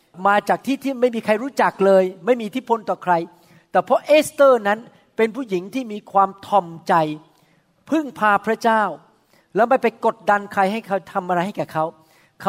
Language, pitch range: Thai, 170-225 Hz